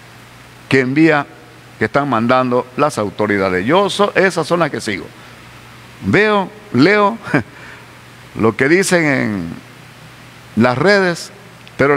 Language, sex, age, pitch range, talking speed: Spanish, male, 50-69, 140-230 Hz, 115 wpm